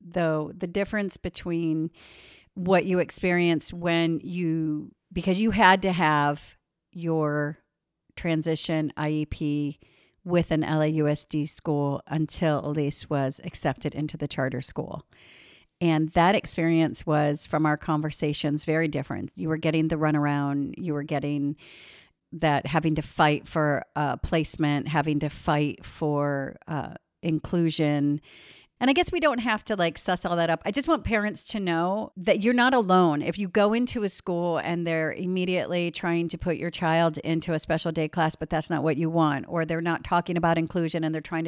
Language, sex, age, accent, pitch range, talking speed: English, female, 50-69, American, 150-175 Hz, 165 wpm